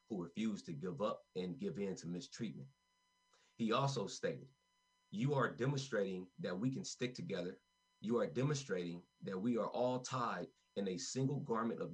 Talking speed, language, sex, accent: 170 wpm, English, male, American